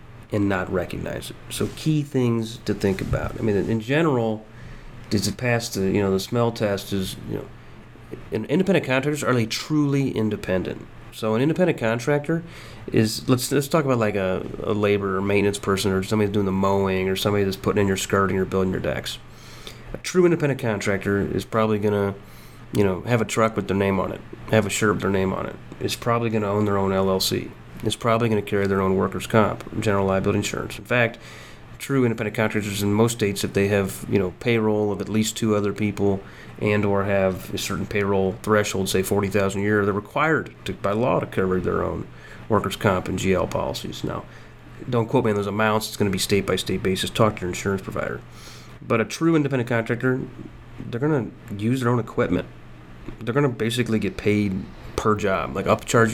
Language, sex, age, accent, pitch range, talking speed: English, male, 30-49, American, 100-115 Hz, 210 wpm